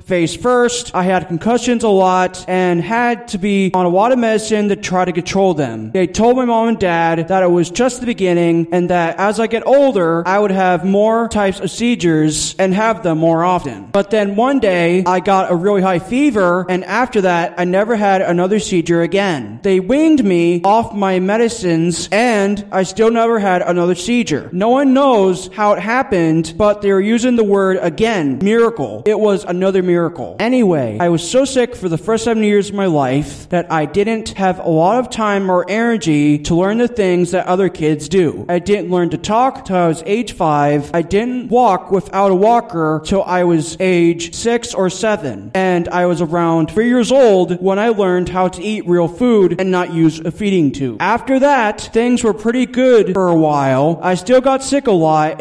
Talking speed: 205 wpm